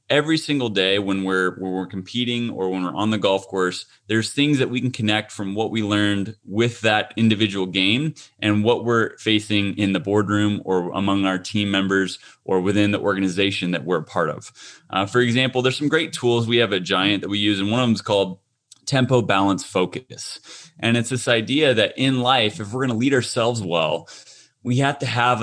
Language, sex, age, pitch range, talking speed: English, male, 30-49, 105-135 Hz, 210 wpm